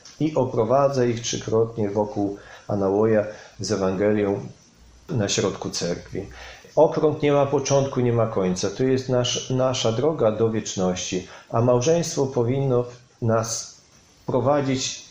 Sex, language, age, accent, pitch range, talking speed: male, Polish, 40-59, native, 105-135 Hz, 120 wpm